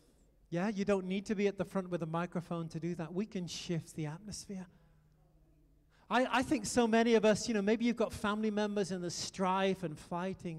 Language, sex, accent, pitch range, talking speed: English, male, British, 175-235 Hz, 220 wpm